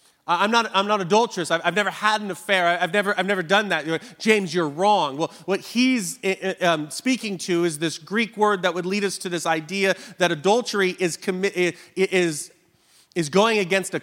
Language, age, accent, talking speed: English, 30-49, American, 195 wpm